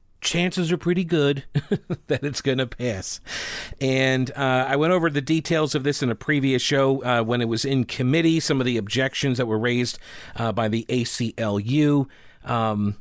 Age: 40-59